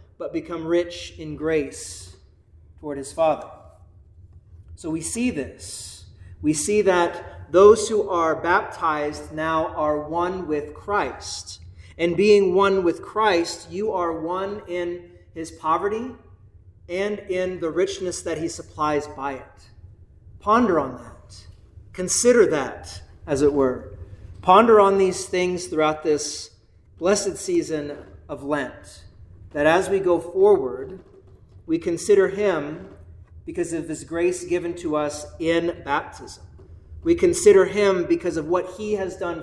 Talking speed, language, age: 135 wpm, English, 40-59